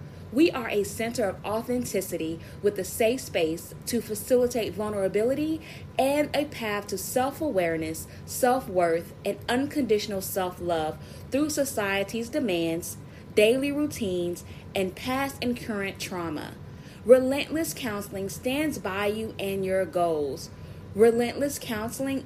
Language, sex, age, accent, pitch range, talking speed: English, female, 20-39, American, 180-230 Hz, 115 wpm